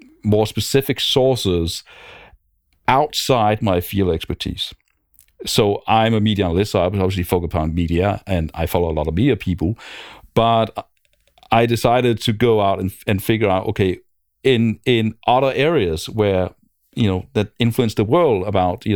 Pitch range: 95-115 Hz